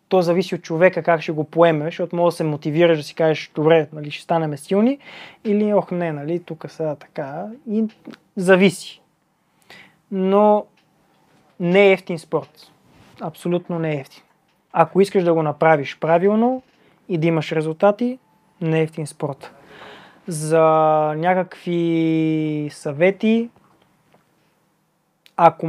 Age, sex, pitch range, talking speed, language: 20-39, male, 155-185 Hz, 130 wpm, Bulgarian